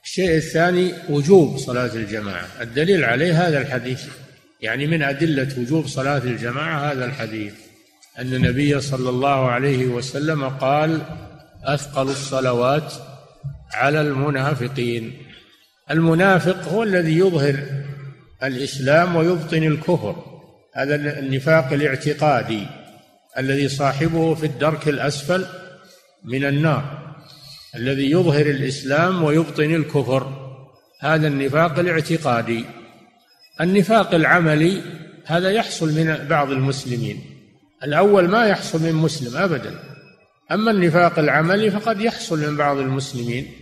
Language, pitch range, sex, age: Arabic, 135-175 Hz, male, 50-69